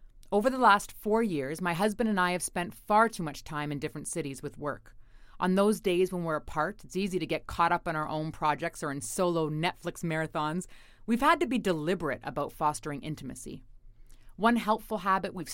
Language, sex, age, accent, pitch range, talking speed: English, female, 30-49, American, 145-185 Hz, 205 wpm